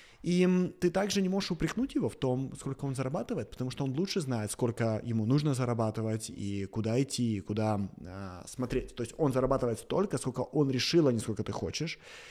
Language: Russian